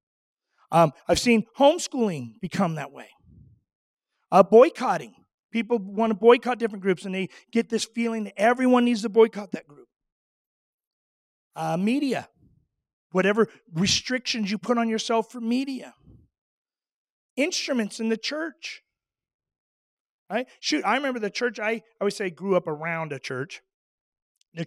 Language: English